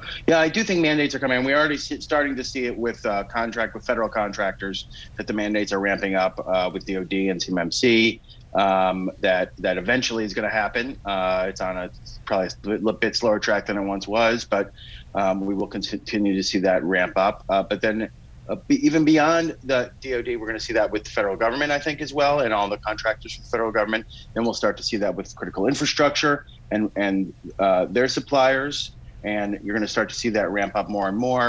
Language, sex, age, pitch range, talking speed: English, male, 30-49, 95-125 Hz, 225 wpm